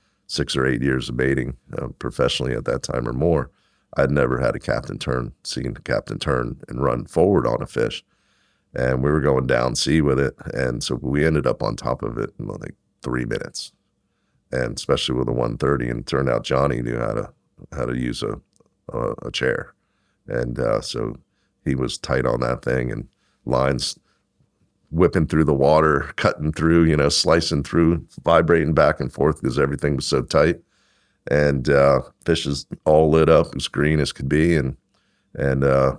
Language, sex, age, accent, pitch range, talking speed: English, male, 40-59, American, 65-75 Hz, 190 wpm